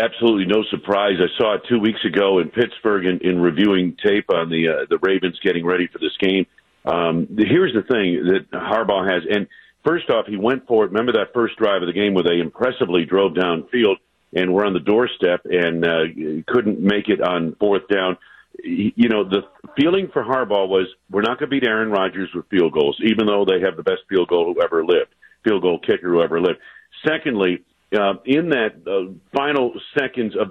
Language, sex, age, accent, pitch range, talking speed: English, male, 50-69, American, 95-135 Hz, 210 wpm